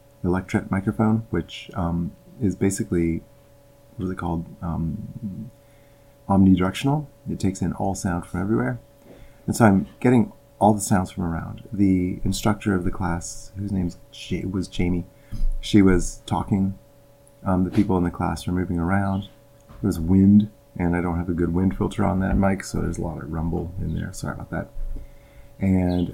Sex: male